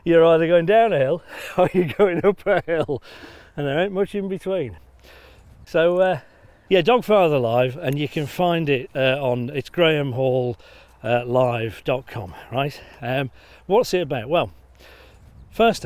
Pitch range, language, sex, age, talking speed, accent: 120-165 Hz, English, male, 40-59, 150 wpm, British